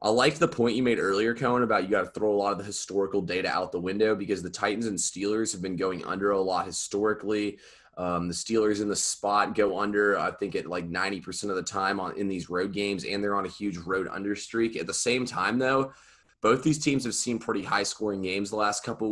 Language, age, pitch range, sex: English, 20-39, 95-105 Hz, male